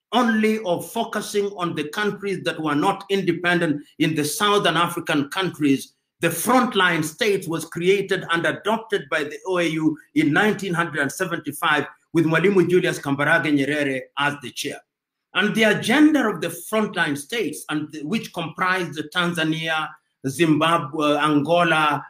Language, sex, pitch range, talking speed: English, male, 155-210 Hz, 135 wpm